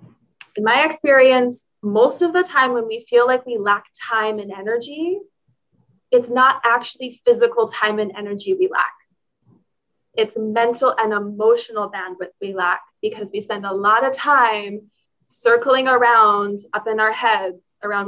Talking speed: 155 wpm